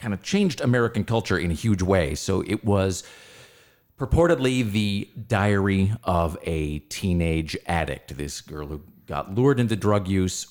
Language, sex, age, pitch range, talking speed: English, male, 40-59, 80-95 Hz, 155 wpm